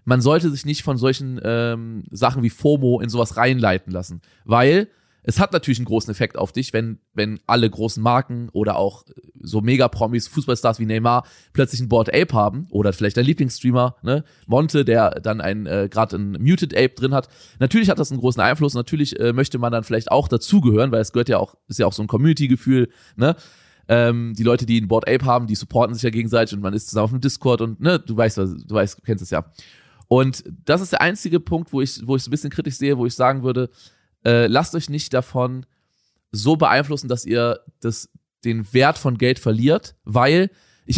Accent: German